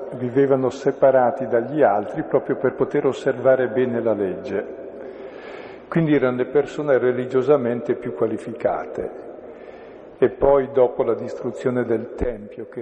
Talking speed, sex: 120 wpm, male